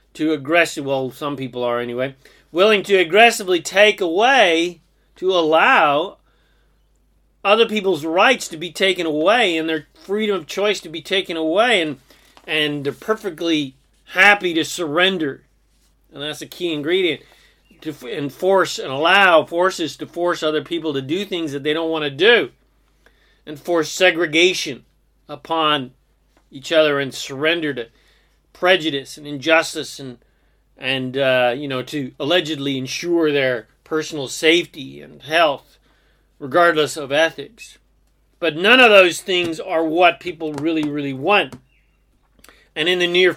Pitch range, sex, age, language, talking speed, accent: 140-180 Hz, male, 40-59, English, 145 wpm, American